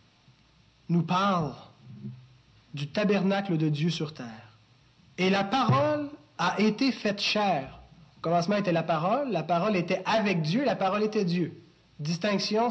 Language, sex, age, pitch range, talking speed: French, male, 30-49, 150-215 Hz, 140 wpm